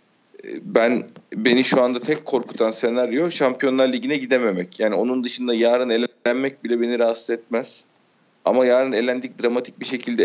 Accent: native